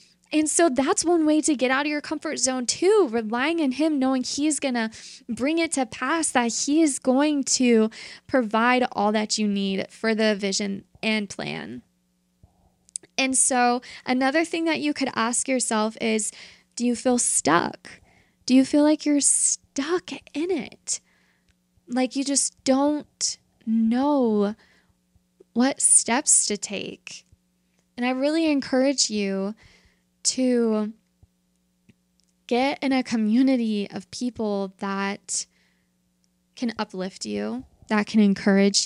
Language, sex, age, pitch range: English, female, 10-29, 200-265 Hz